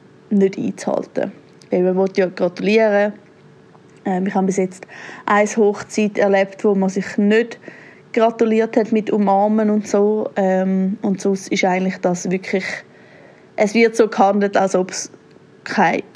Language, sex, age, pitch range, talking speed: German, female, 20-39, 195-225 Hz, 135 wpm